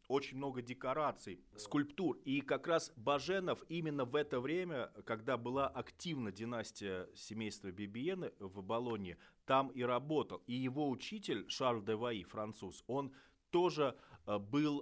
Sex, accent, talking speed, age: male, native, 135 wpm, 30-49